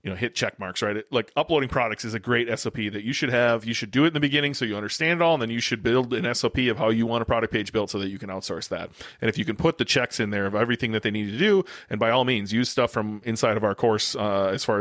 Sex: male